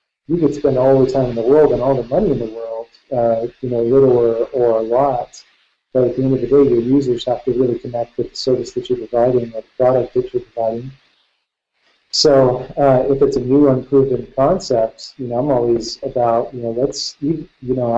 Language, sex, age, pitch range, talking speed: English, male, 40-59, 120-135 Hz, 225 wpm